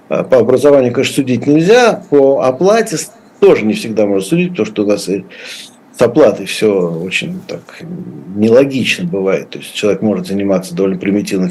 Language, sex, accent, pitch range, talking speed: Russian, male, native, 110-170 Hz, 155 wpm